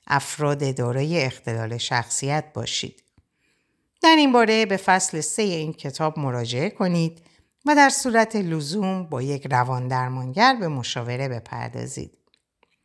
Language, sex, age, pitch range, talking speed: Persian, female, 60-79, 125-185 Hz, 120 wpm